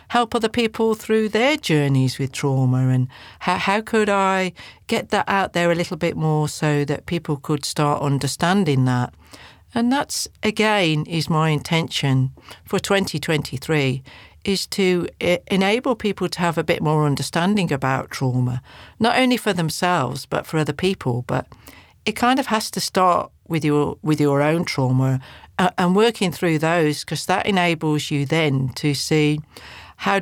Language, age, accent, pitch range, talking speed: English, 50-69, British, 140-190 Hz, 165 wpm